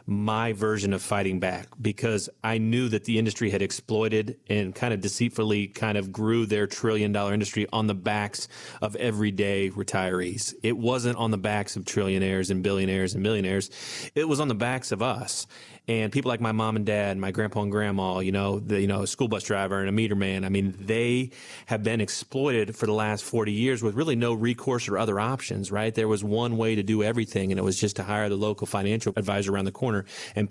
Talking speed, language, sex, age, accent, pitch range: 220 wpm, English, male, 30-49, American, 100-115 Hz